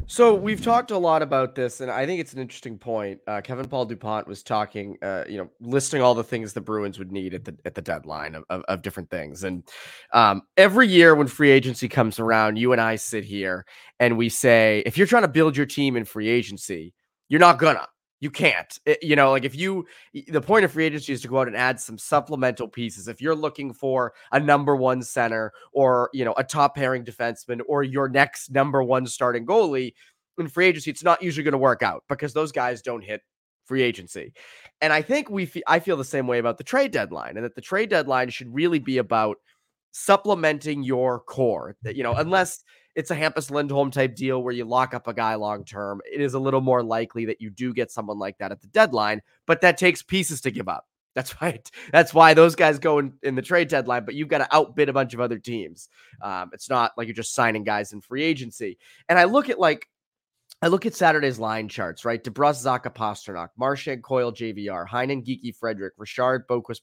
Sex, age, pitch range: male, 20-39, 115-155 Hz